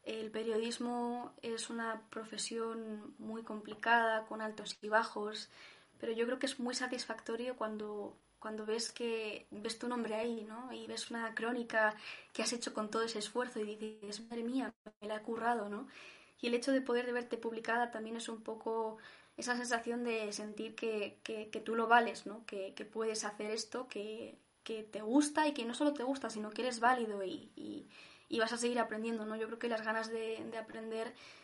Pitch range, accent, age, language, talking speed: 215-245 Hz, Spanish, 20-39, Spanish, 200 wpm